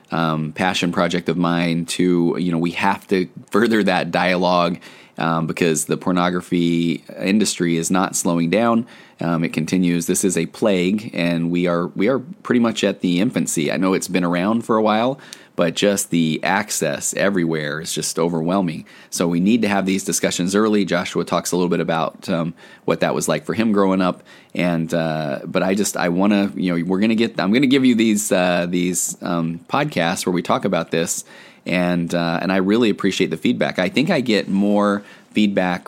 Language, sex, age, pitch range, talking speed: English, male, 20-39, 85-95 Hz, 200 wpm